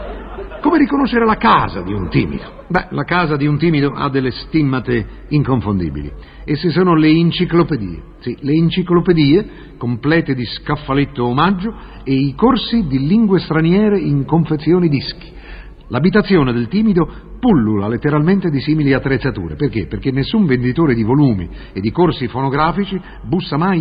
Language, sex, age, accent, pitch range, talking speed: Italian, male, 50-69, native, 130-175 Hz, 145 wpm